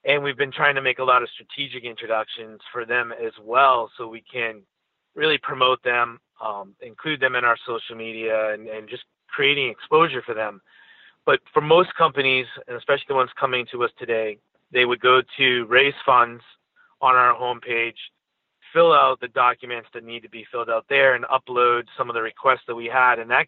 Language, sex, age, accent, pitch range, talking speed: English, male, 30-49, American, 115-145 Hz, 200 wpm